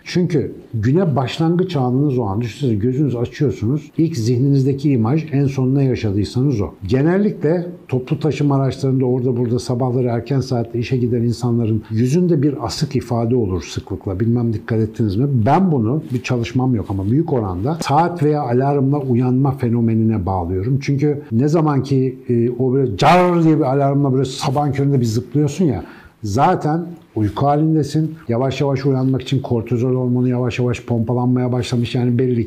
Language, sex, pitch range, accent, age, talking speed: Turkish, male, 120-150 Hz, native, 60-79, 155 wpm